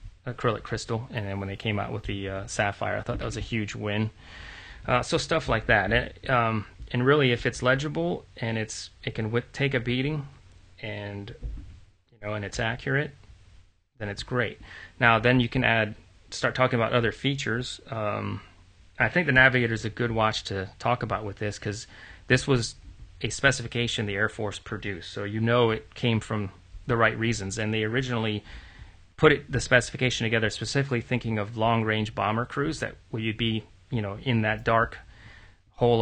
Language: English